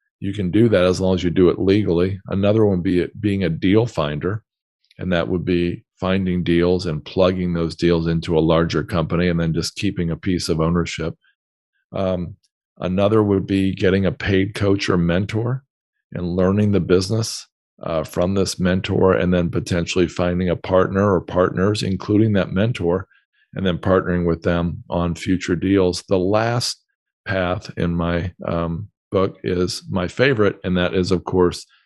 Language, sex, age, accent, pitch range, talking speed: English, male, 50-69, American, 85-95 Hz, 175 wpm